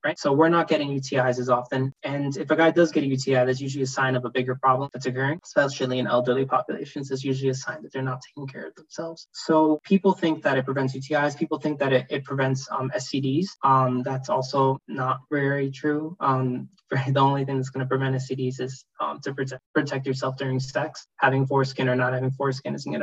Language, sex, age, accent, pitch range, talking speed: English, male, 20-39, American, 130-150 Hz, 225 wpm